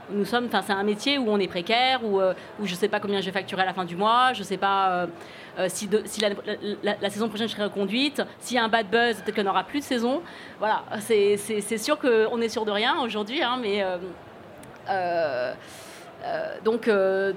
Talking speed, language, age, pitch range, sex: 240 wpm, French, 30-49, 205-255 Hz, female